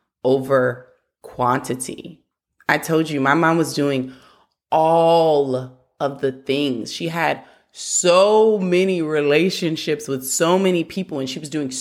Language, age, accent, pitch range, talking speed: English, 20-39, American, 135-170 Hz, 130 wpm